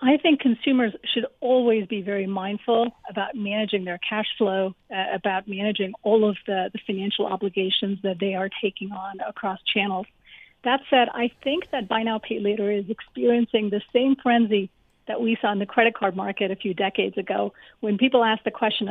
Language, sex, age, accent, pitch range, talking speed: English, female, 40-59, American, 200-235 Hz, 190 wpm